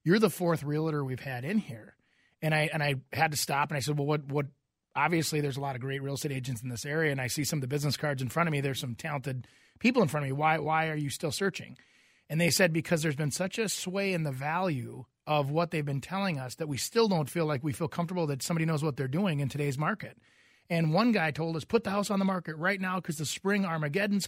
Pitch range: 150-190 Hz